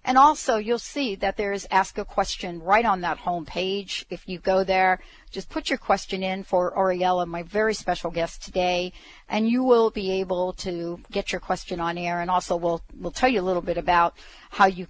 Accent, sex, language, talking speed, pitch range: American, female, English, 220 wpm, 175-220 Hz